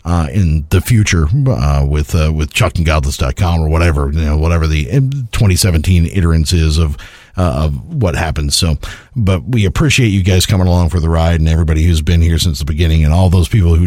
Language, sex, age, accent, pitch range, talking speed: English, male, 50-69, American, 80-100 Hz, 215 wpm